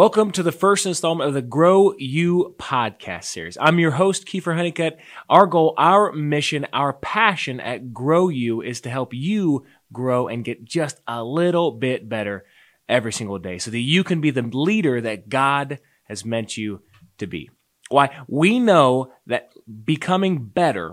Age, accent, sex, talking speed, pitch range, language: 20-39, American, male, 170 wpm, 115-165 Hz, English